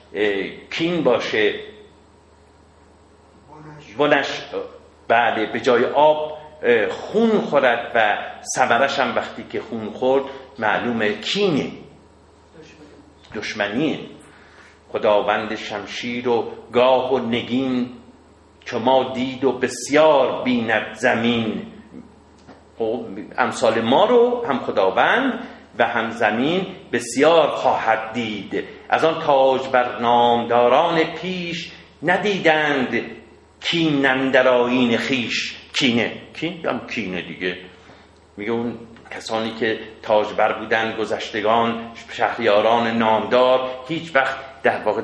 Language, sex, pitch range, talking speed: Persian, male, 110-150 Hz, 95 wpm